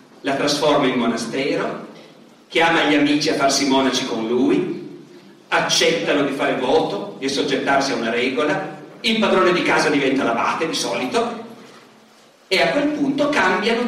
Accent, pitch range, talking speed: native, 150-230 Hz, 145 wpm